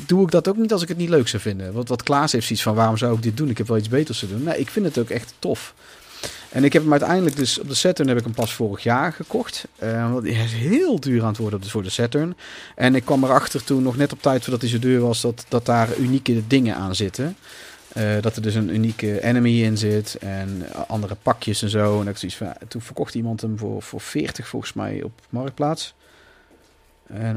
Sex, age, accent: male, 40-59, Dutch